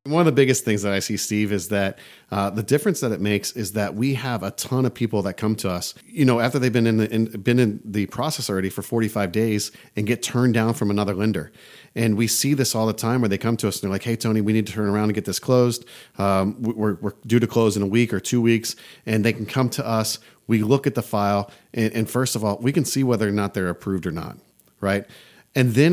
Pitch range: 105-125 Hz